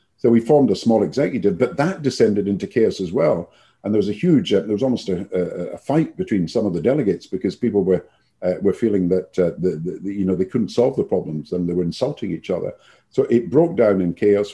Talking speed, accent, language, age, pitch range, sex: 250 wpm, British, English, 50-69, 90-115 Hz, male